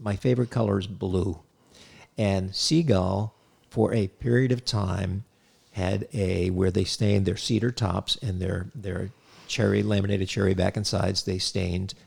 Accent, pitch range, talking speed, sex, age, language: American, 95-110 Hz, 155 wpm, male, 50-69, English